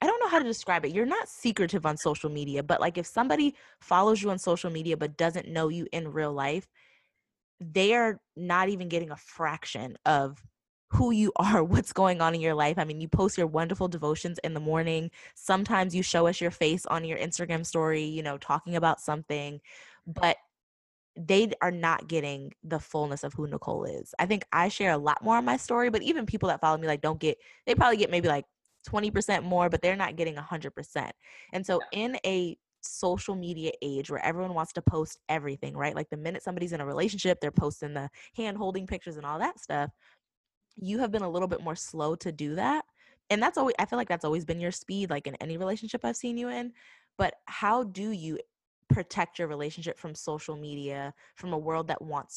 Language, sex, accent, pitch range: English, female, American, 155-195 Hz